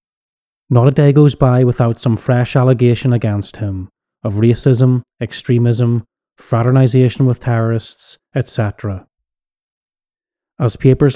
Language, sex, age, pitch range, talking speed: English, male, 30-49, 110-130 Hz, 110 wpm